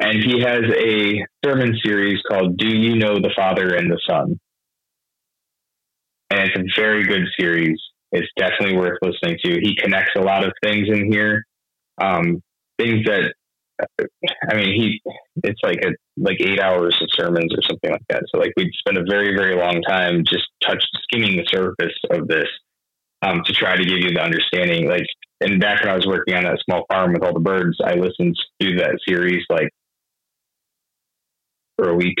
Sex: male